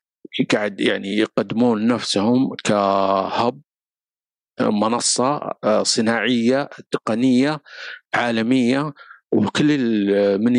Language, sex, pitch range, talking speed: Arabic, male, 100-120 Hz, 55 wpm